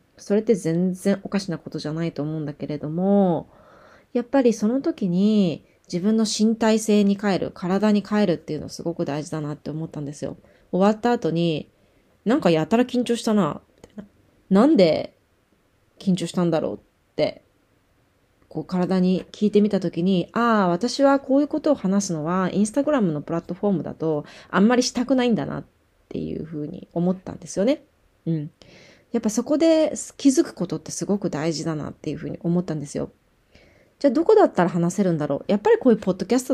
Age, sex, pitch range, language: 20-39, female, 160-225 Hz, Japanese